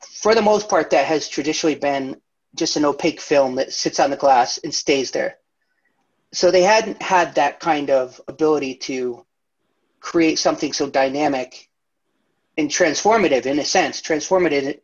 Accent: American